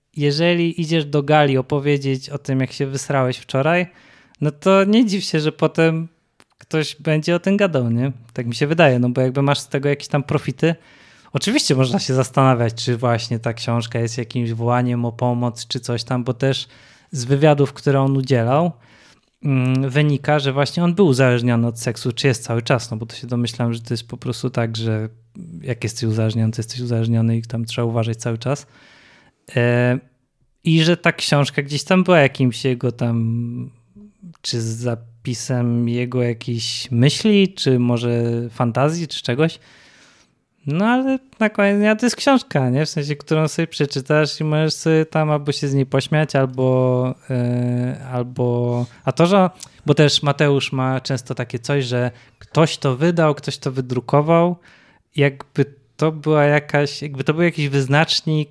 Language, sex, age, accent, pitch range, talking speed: Polish, male, 20-39, native, 120-155 Hz, 170 wpm